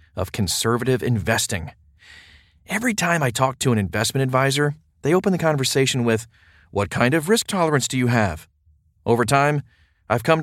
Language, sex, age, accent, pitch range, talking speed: English, male, 40-59, American, 105-140 Hz, 160 wpm